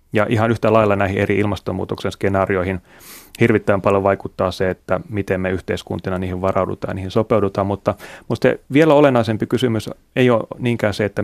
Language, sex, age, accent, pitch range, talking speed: Finnish, male, 30-49, native, 100-115 Hz, 165 wpm